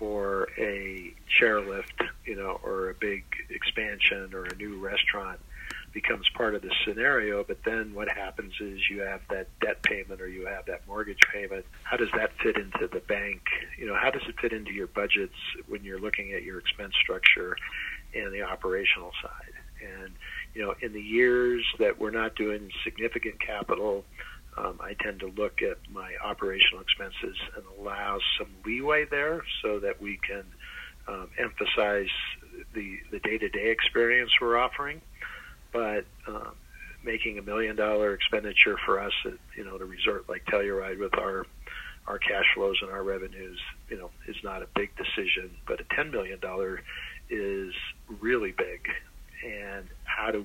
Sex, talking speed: male, 165 wpm